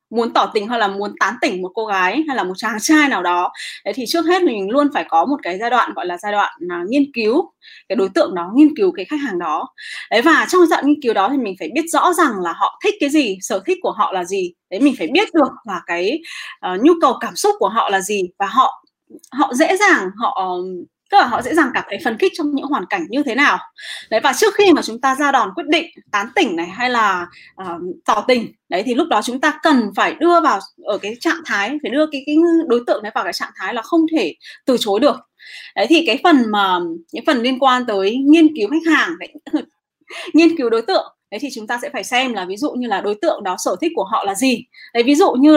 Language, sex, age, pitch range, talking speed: Vietnamese, female, 20-39, 225-330 Hz, 270 wpm